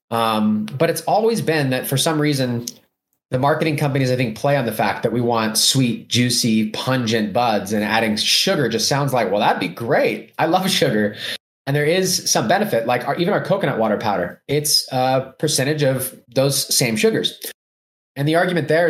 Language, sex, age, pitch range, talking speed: English, male, 20-39, 110-150 Hz, 195 wpm